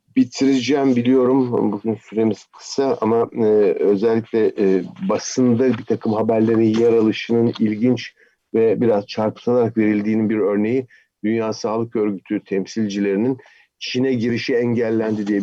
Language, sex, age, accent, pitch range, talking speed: Turkish, male, 50-69, native, 100-125 Hz, 115 wpm